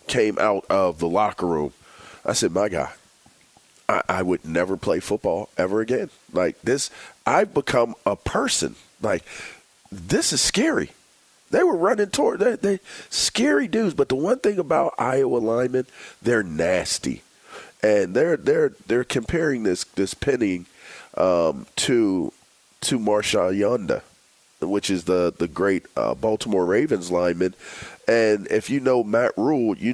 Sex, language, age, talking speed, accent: male, English, 40-59, 150 wpm, American